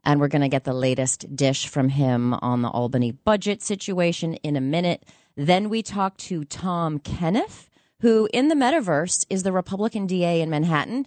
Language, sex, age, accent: English, female, 30-49, American